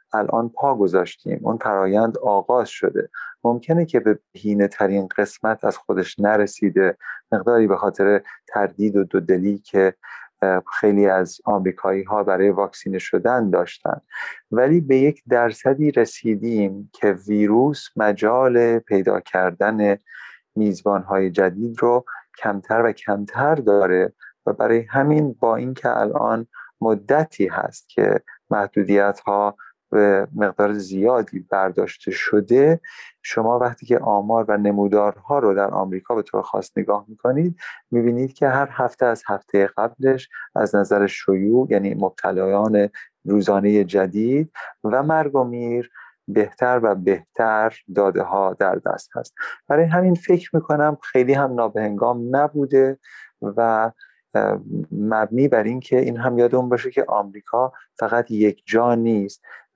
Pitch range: 100-125 Hz